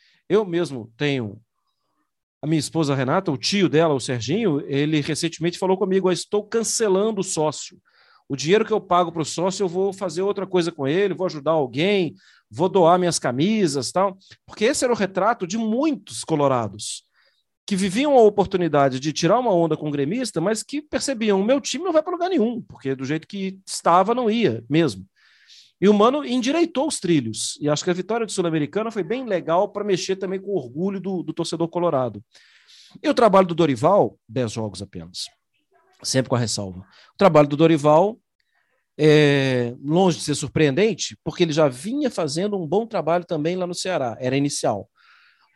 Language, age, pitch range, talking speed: Portuguese, 40-59, 150-205 Hz, 190 wpm